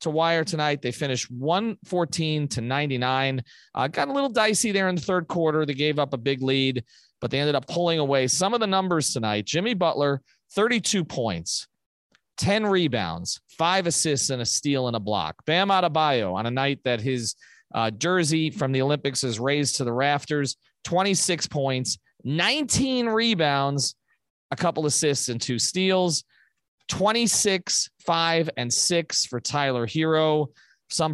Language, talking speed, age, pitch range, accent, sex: English, 165 wpm, 30-49, 130-175 Hz, American, male